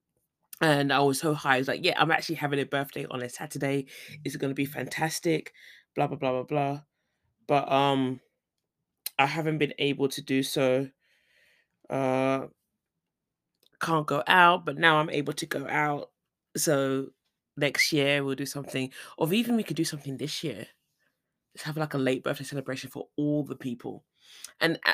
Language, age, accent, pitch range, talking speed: English, 20-39, British, 135-155 Hz, 175 wpm